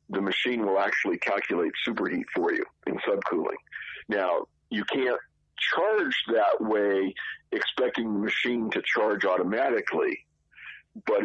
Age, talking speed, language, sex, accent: 50-69, 125 wpm, English, male, American